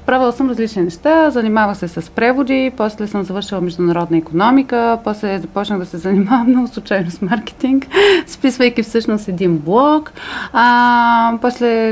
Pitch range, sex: 185-245 Hz, female